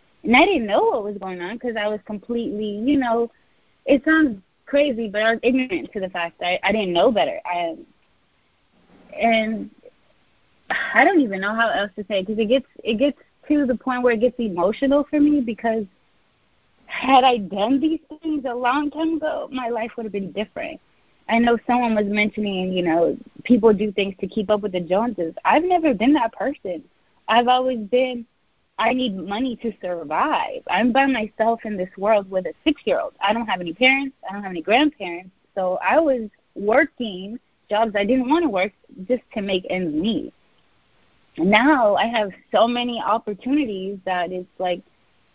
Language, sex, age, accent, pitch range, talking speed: English, female, 20-39, American, 195-265 Hz, 185 wpm